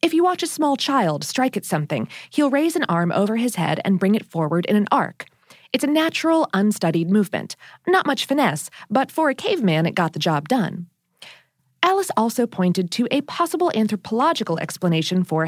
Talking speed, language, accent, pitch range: 190 wpm, English, American, 175-280 Hz